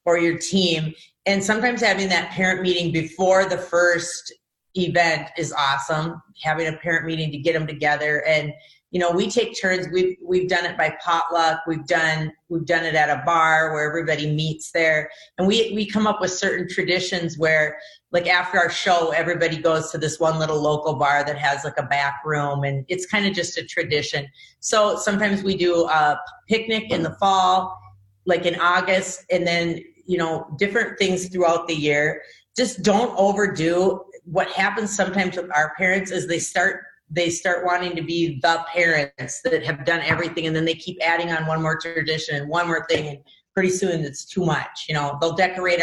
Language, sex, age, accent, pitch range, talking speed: English, female, 30-49, American, 160-185 Hz, 195 wpm